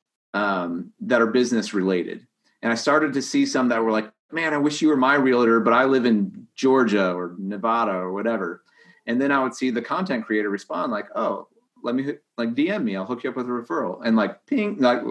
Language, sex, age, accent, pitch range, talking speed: English, male, 30-49, American, 105-155 Hz, 225 wpm